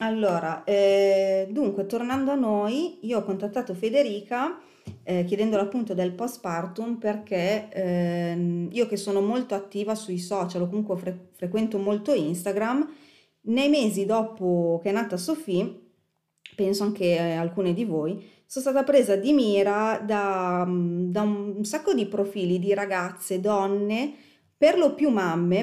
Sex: female